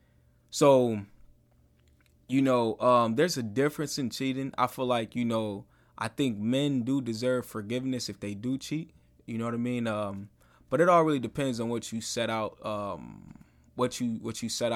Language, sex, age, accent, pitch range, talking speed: English, male, 20-39, American, 105-140 Hz, 185 wpm